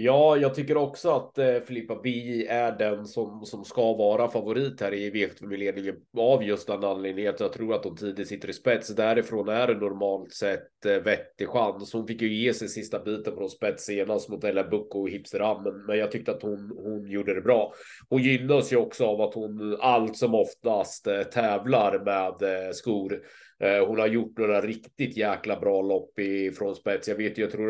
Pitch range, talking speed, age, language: 105-125 Hz, 205 wpm, 30-49, Swedish